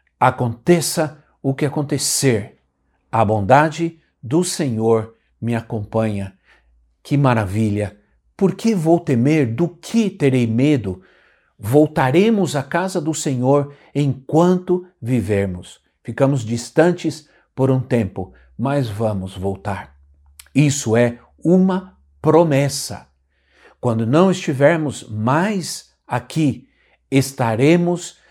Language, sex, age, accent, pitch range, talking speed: Portuguese, male, 60-79, Brazilian, 105-150 Hz, 95 wpm